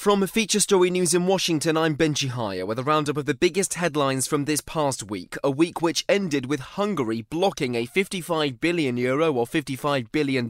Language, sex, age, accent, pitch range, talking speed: English, male, 20-39, British, 125-160 Hz, 195 wpm